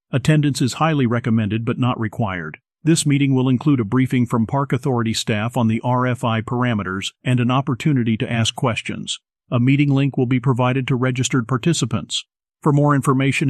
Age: 50-69